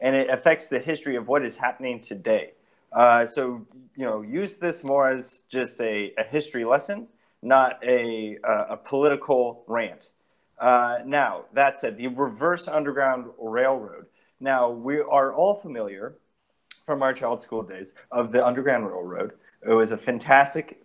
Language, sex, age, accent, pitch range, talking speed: English, male, 30-49, American, 120-145 Hz, 160 wpm